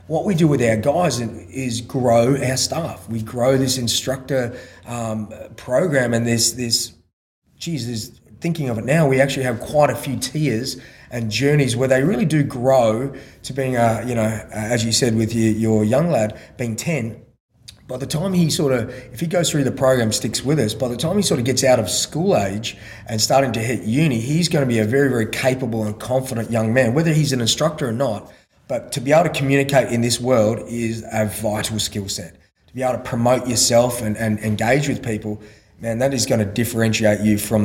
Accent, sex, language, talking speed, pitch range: Australian, male, English, 215 wpm, 110-135 Hz